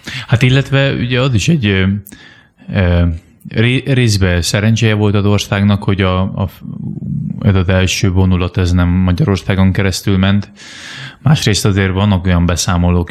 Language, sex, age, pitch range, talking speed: Hungarian, male, 20-39, 90-105 Hz, 135 wpm